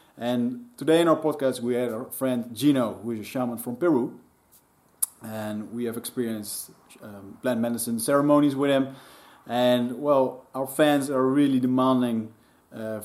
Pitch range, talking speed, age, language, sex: 115-145 Hz, 150 wpm, 30-49, Dutch, male